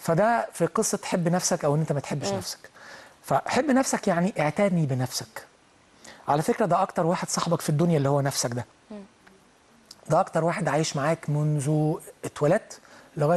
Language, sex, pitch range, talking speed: Arabic, male, 150-190 Hz, 155 wpm